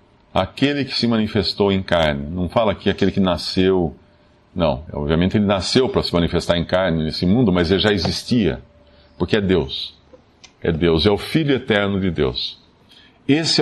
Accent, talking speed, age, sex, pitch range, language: Brazilian, 170 wpm, 50-69, male, 100-150 Hz, Portuguese